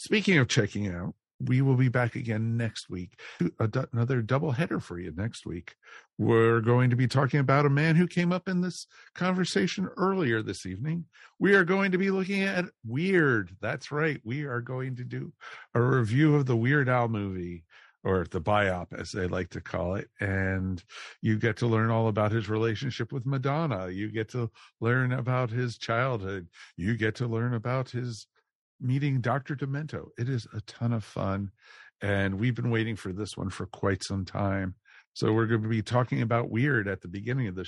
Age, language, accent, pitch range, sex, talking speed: 50-69, English, American, 100-135 Hz, male, 195 wpm